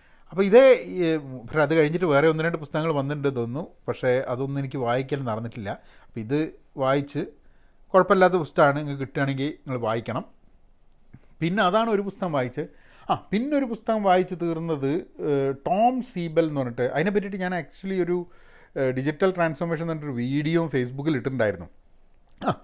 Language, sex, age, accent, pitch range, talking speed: Malayalam, male, 40-59, native, 135-185 Hz, 125 wpm